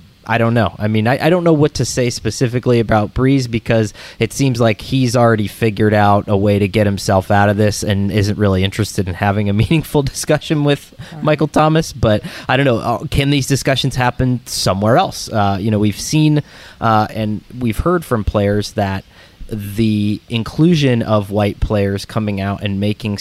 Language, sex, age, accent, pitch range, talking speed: English, male, 20-39, American, 100-125 Hz, 190 wpm